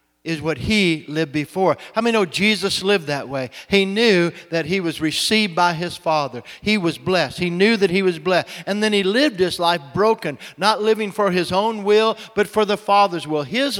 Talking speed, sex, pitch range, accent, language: 215 wpm, male, 180-215 Hz, American, English